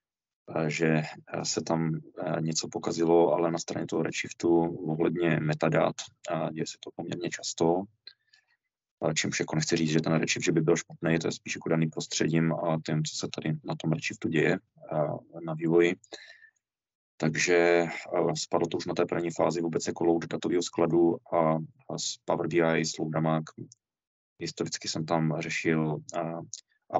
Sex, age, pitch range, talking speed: male, 20-39, 80-85 Hz, 160 wpm